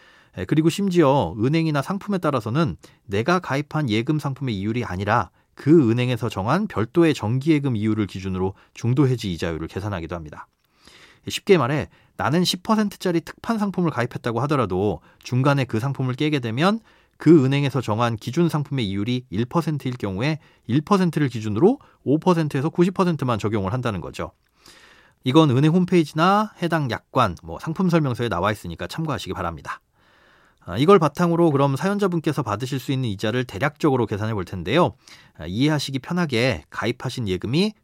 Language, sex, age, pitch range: Korean, male, 40-59, 110-170 Hz